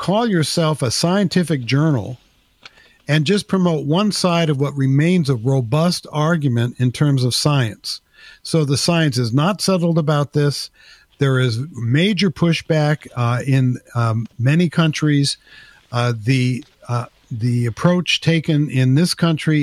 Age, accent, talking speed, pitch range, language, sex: 50-69, American, 140 wpm, 130-160 Hz, English, male